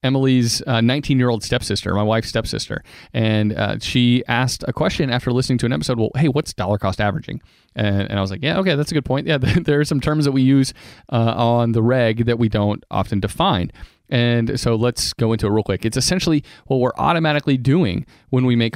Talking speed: 220 wpm